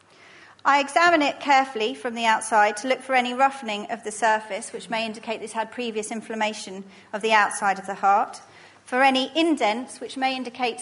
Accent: British